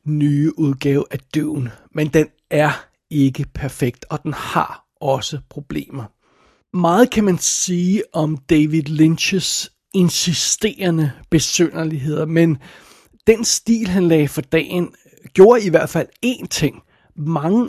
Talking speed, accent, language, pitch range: 125 wpm, native, Danish, 155-200 Hz